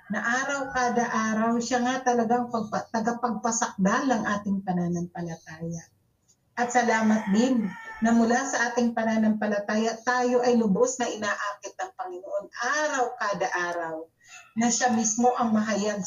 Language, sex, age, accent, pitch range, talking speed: Filipino, female, 40-59, native, 190-230 Hz, 125 wpm